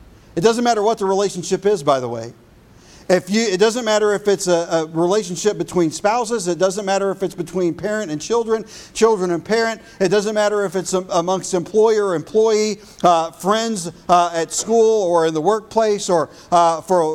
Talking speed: 190 wpm